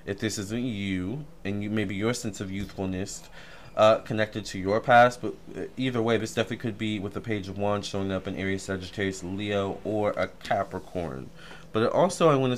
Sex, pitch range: male, 100-125 Hz